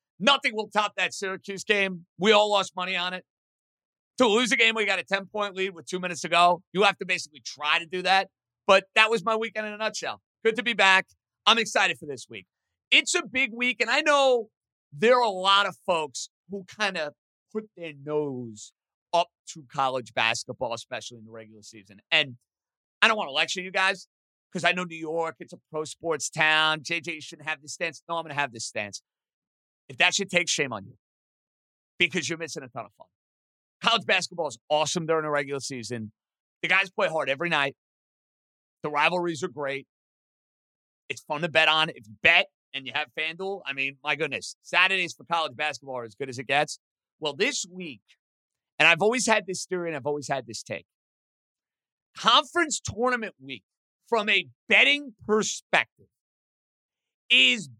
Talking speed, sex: 195 wpm, male